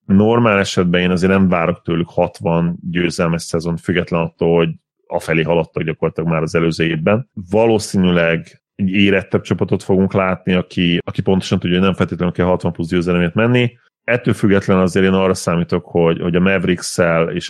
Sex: male